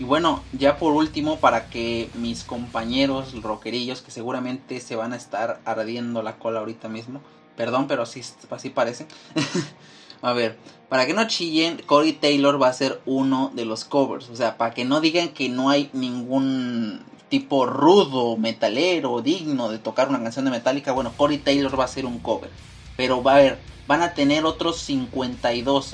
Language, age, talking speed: Spanish, 30-49, 185 wpm